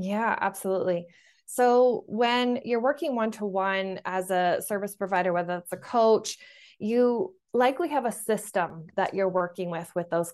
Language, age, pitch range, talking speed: English, 20-39, 175-205 Hz, 160 wpm